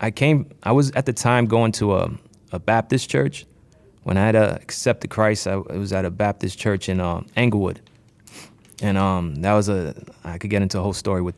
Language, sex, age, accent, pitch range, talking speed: English, male, 20-39, American, 95-115 Hz, 220 wpm